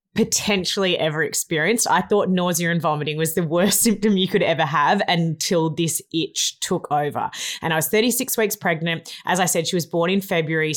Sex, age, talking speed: female, 20-39, 195 wpm